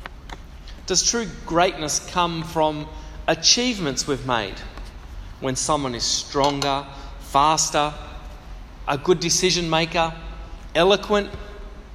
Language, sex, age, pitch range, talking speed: English, male, 30-49, 140-185 Hz, 90 wpm